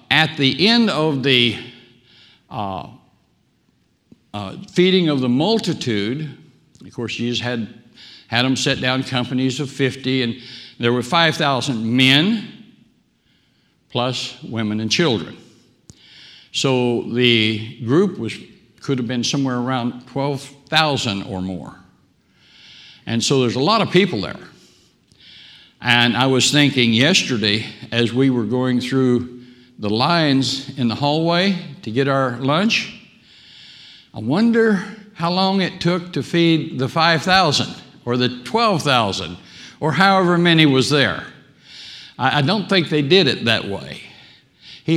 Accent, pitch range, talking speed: American, 120-155 Hz, 130 wpm